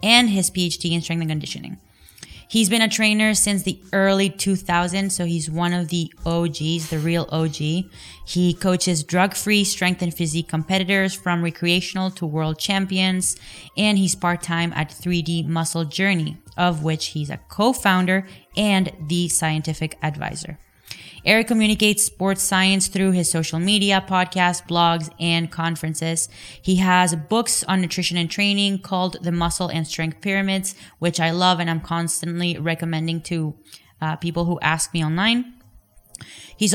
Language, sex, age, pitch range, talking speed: English, female, 20-39, 165-190 Hz, 150 wpm